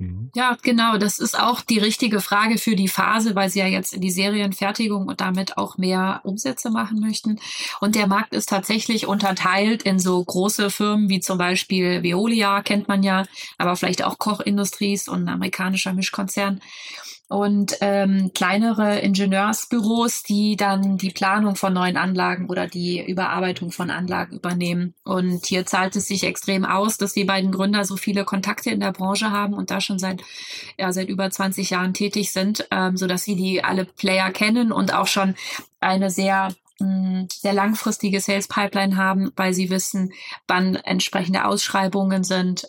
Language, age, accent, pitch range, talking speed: German, 30-49, German, 185-210 Hz, 165 wpm